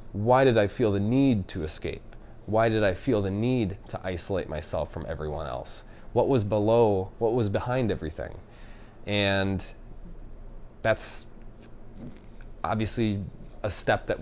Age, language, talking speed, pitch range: 30-49, English, 140 wpm, 95-120 Hz